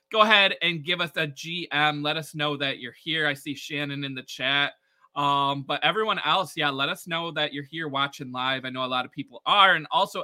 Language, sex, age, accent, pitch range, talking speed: English, male, 20-39, American, 140-170 Hz, 240 wpm